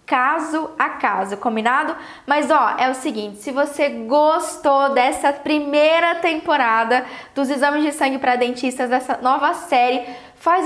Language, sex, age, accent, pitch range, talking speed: Portuguese, female, 10-29, Brazilian, 255-330 Hz, 140 wpm